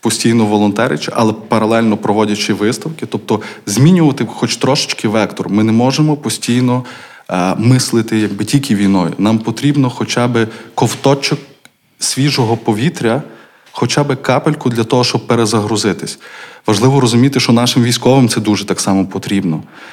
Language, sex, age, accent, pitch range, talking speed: Ukrainian, male, 20-39, native, 110-130 Hz, 135 wpm